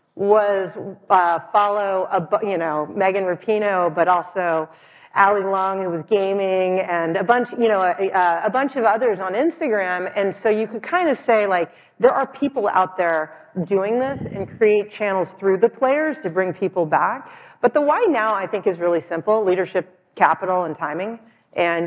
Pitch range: 180-220 Hz